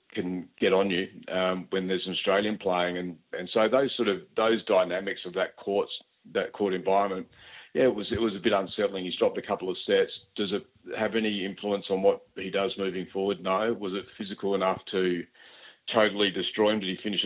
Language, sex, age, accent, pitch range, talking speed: English, male, 40-59, Australian, 90-100 Hz, 210 wpm